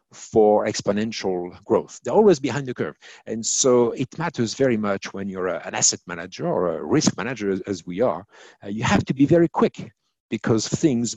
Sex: male